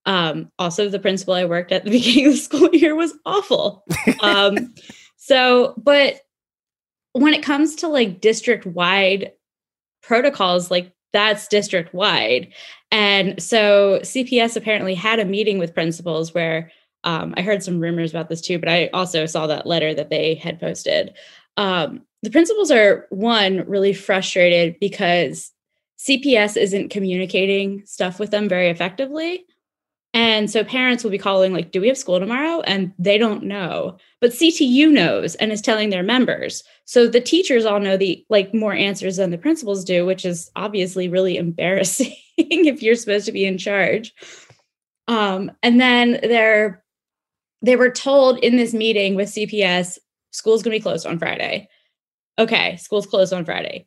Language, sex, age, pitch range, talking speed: English, female, 10-29, 190-260 Hz, 160 wpm